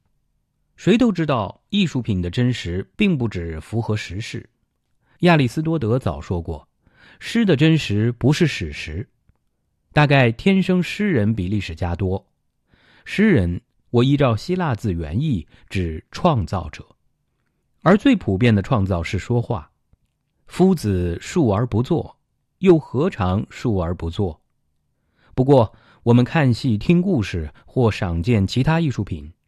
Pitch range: 95-150 Hz